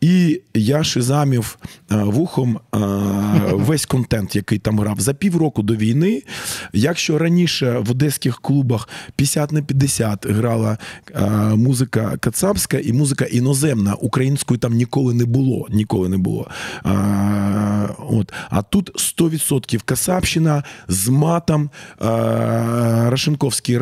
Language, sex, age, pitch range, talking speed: Ukrainian, male, 20-39, 115-165 Hz, 120 wpm